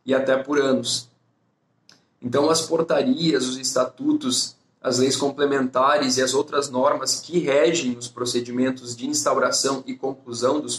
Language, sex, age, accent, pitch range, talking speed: Portuguese, male, 20-39, Brazilian, 125-140 Hz, 140 wpm